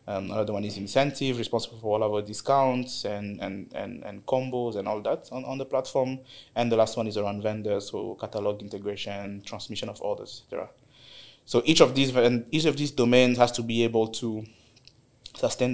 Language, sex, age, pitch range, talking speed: English, male, 20-39, 115-130 Hz, 195 wpm